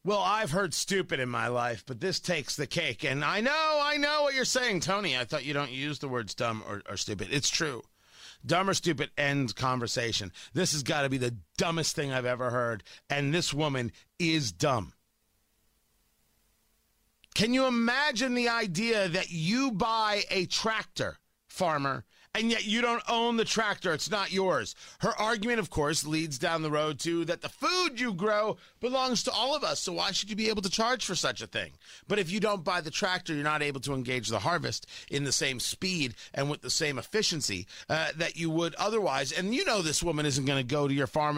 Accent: American